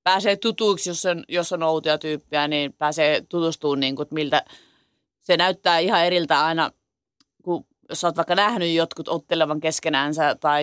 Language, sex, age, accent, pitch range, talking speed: Finnish, female, 30-49, native, 150-185 Hz, 135 wpm